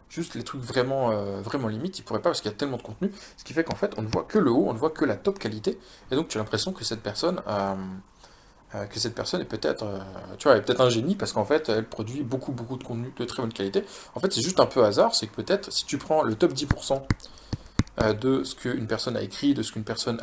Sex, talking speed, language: male, 260 wpm, French